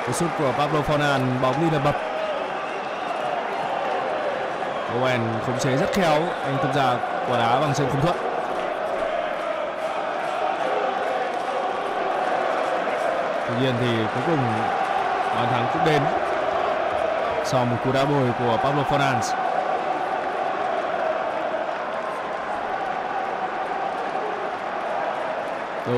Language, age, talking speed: Vietnamese, 20-39, 90 wpm